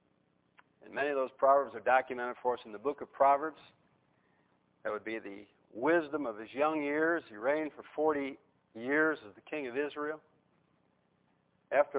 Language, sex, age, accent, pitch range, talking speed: English, male, 50-69, American, 125-165 Hz, 170 wpm